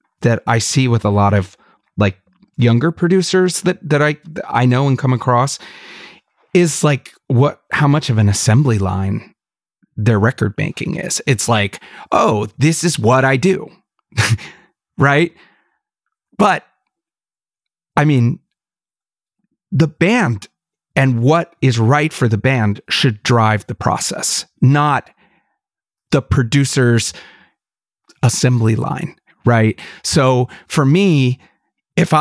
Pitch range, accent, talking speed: 115-155 Hz, American, 125 wpm